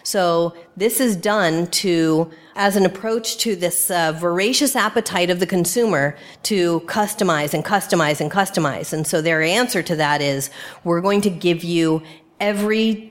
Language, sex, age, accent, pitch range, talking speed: English, female, 40-59, American, 170-215 Hz, 160 wpm